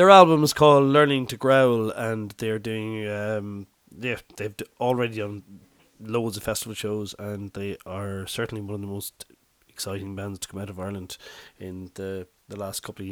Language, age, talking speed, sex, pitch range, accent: English, 20-39, 185 wpm, male, 95-120 Hz, Irish